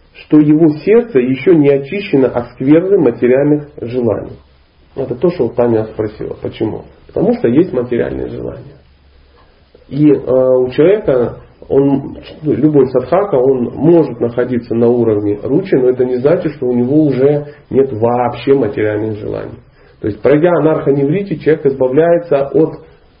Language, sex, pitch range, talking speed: Russian, male, 115-145 Hz, 135 wpm